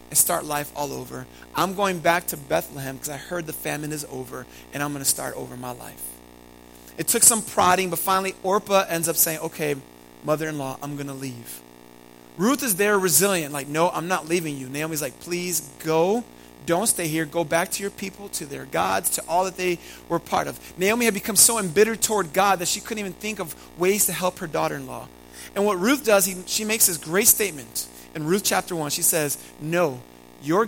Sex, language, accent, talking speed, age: male, Italian, American, 210 wpm, 30-49